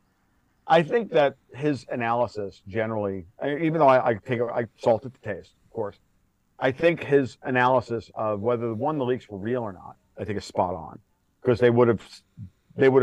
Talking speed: 195 wpm